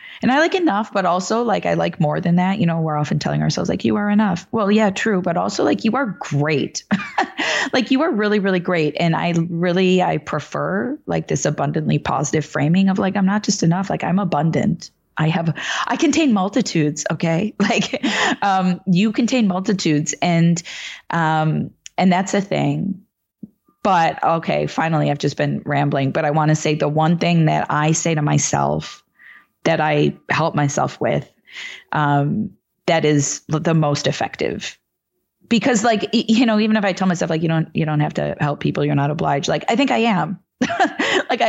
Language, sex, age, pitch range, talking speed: English, female, 20-39, 155-210 Hz, 190 wpm